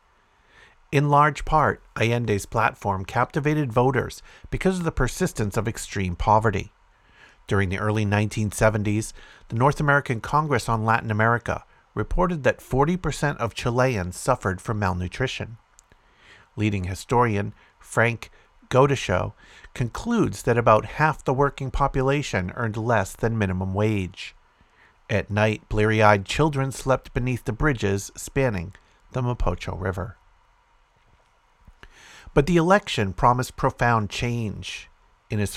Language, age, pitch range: English, 50-69, 105-130 Hz